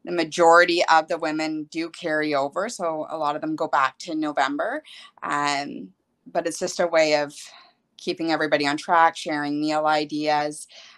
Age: 20-39